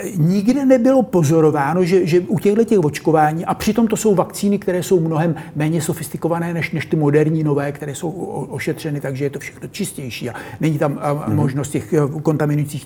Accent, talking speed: native, 190 wpm